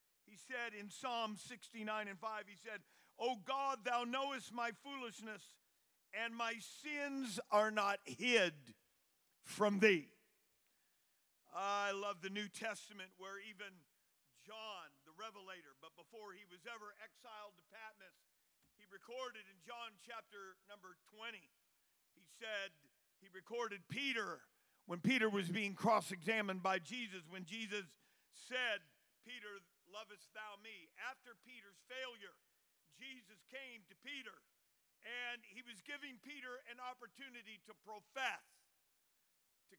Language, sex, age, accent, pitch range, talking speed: English, male, 50-69, American, 200-245 Hz, 125 wpm